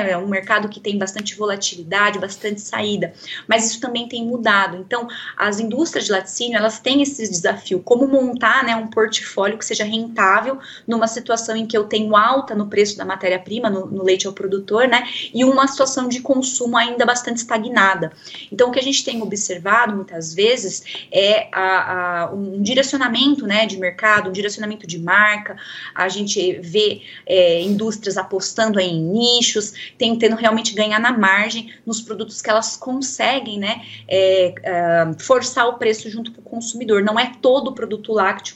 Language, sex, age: Portuguese, female, 20-39